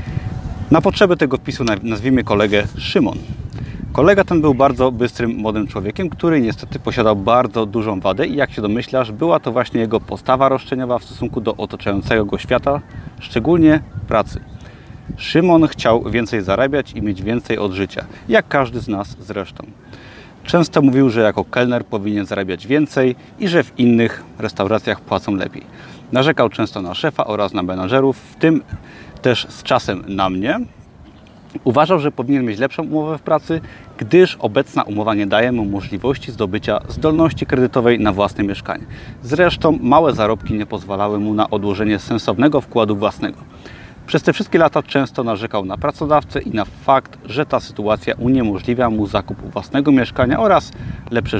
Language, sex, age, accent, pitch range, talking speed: Polish, male, 30-49, native, 105-135 Hz, 155 wpm